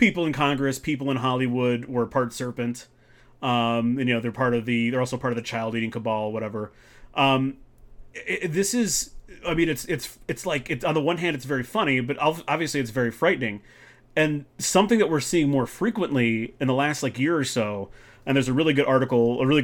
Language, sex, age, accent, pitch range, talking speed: English, male, 30-49, American, 120-150 Hz, 220 wpm